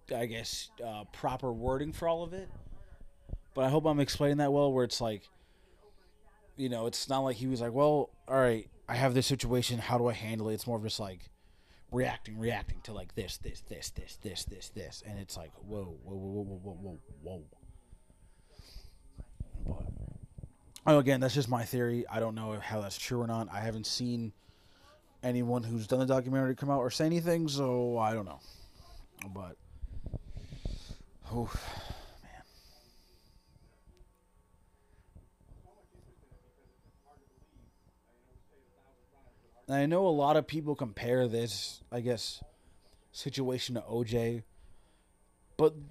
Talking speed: 145 wpm